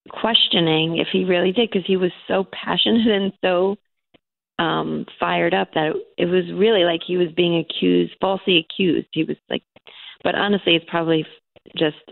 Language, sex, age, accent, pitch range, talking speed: English, female, 30-49, American, 155-185 Hz, 175 wpm